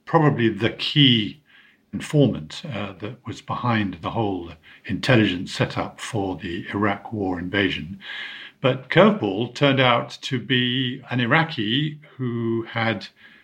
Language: English